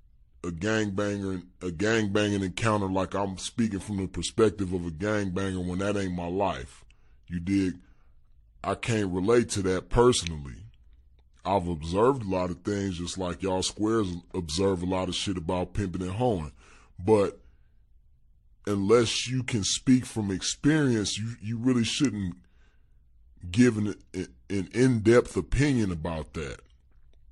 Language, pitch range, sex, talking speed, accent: English, 85-110 Hz, female, 145 wpm, American